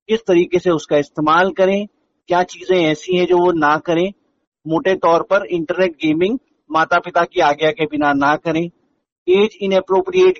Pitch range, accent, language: 170-220 Hz, native, Hindi